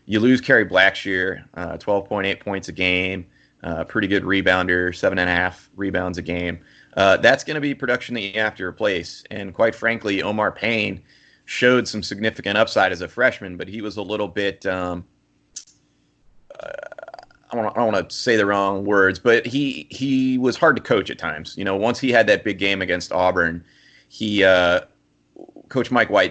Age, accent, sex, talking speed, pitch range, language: 30-49, American, male, 195 wpm, 90-110 Hz, English